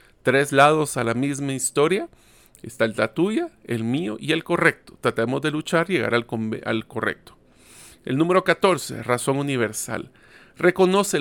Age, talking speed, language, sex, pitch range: 40-59, 150 wpm, Spanish, male, 120-170 Hz